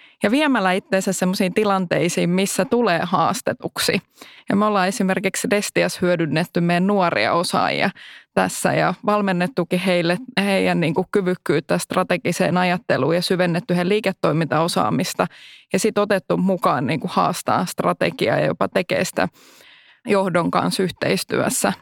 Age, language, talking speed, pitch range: 20-39, Finnish, 115 wpm, 180-200 Hz